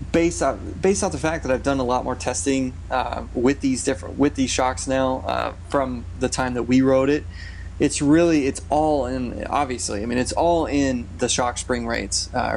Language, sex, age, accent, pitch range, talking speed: English, male, 20-39, American, 105-140 Hz, 215 wpm